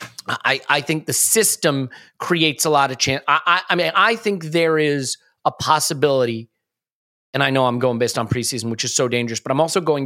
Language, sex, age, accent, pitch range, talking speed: English, male, 30-49, American, 130-165 Hz, 215 wpm